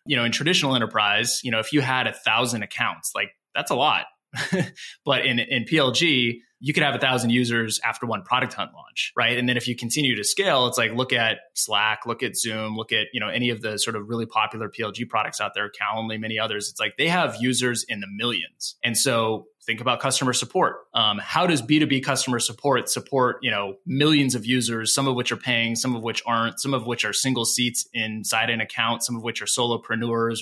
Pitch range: 115-140 Hz